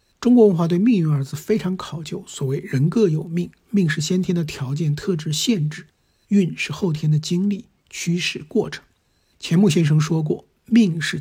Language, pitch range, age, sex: Chinese, 150-195 Hz, 60-79, male